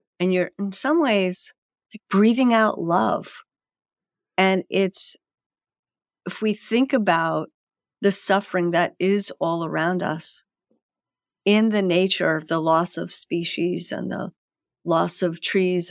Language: English